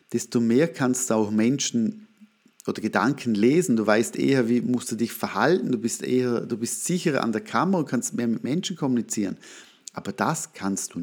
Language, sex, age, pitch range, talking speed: German, male, 50-69, 115-180 Hz, 195 wpm